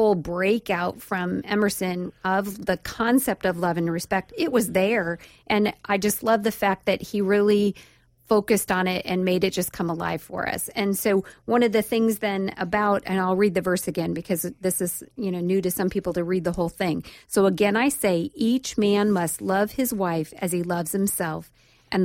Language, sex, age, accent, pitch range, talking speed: English, female, 40-59, American, 185-225 Hz, 205 wpm